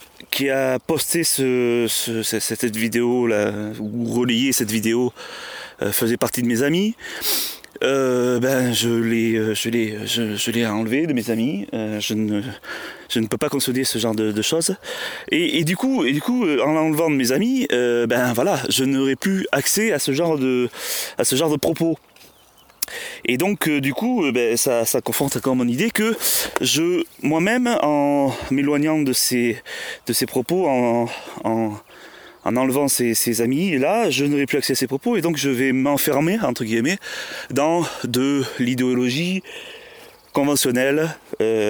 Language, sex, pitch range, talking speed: French, male, 115-150 Hz, 175 wpm